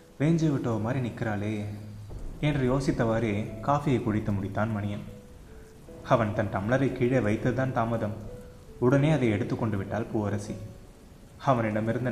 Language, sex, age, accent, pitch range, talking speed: Tamil, male, 20-39, native, 105-125 Hz, 120 wpm